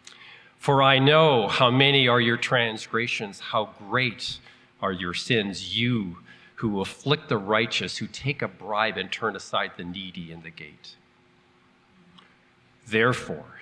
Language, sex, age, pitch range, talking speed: English, male, 40-59, 95-130 Hz, 135 wpm